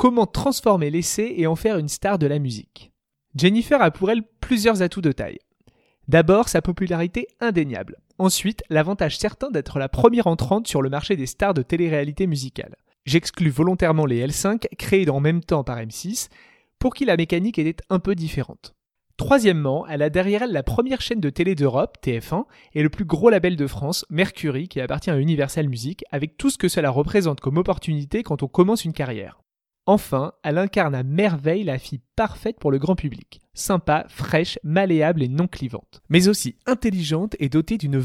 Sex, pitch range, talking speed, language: male, 145-200 Hz, 185 wpm, French